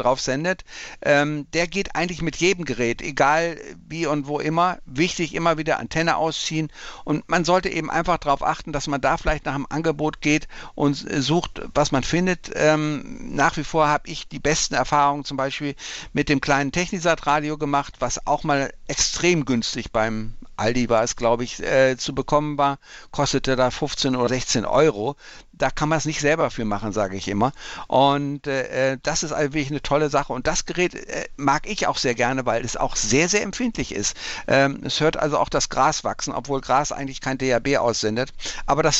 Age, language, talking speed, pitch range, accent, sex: 60-79, German, 200 wpm, 135-160 Hz, German, male